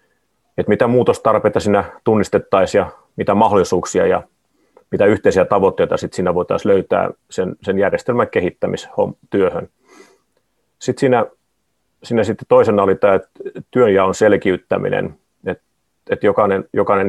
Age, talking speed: 30-49, 120 wpm